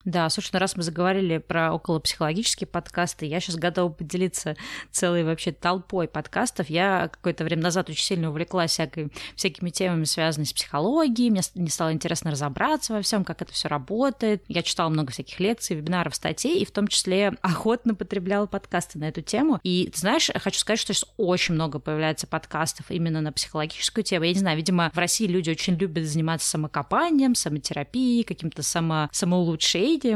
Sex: female